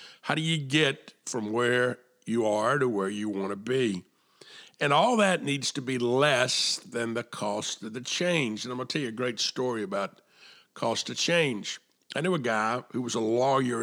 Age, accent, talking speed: 50-69, American, 210 wpm